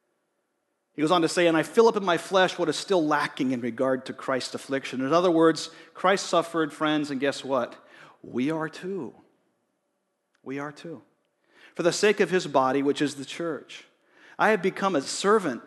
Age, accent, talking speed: 40-59, American, 195 wpm